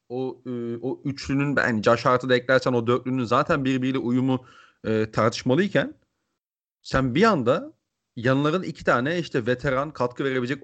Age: 40-59